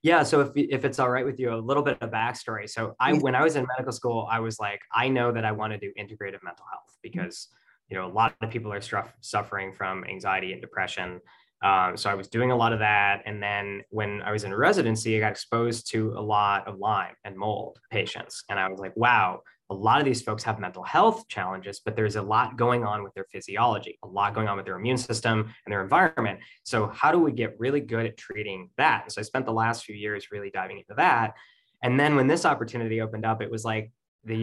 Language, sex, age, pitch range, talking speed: English, male, 20-39, 105-120 Hz, 250 wpm